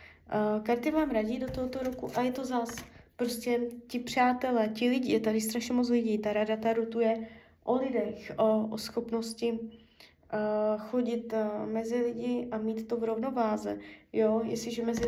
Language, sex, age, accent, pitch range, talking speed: Czech, female, 20-39, native, 220-245 Hz, 155 wpm